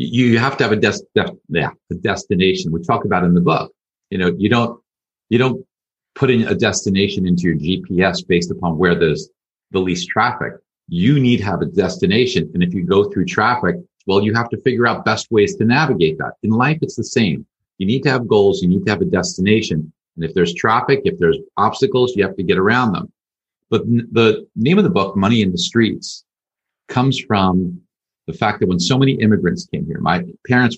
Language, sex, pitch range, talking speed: English, male, 90-125 Hz, 210 wpm